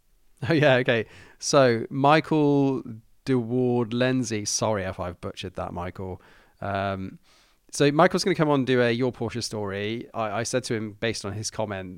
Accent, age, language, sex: British, 30-49, English, male